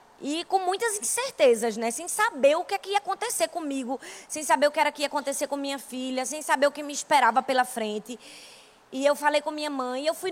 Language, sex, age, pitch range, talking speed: Portuguese, female, 20-39, 240-290 Hz, 240 wpm